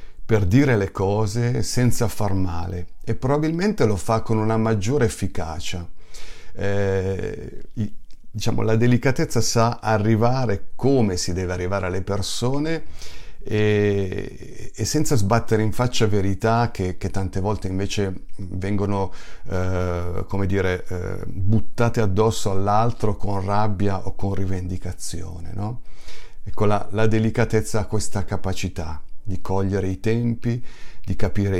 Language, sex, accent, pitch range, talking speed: Italian, male, native, 95-110 Hz, 125 wpm